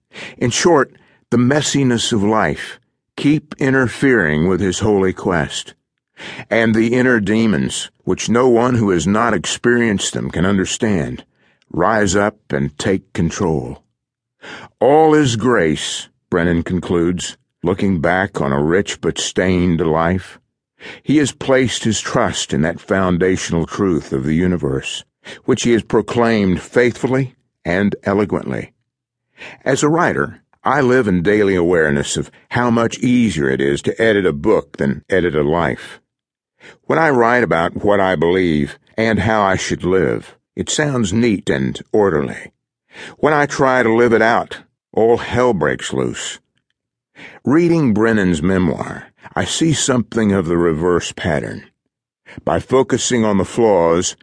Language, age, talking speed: English, 60-79, 140 wpm